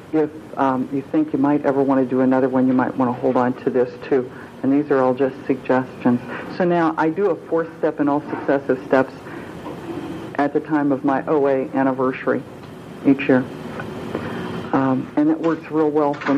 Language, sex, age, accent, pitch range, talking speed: English, female, 60-79, American, 130-160 Hz, 200 wpm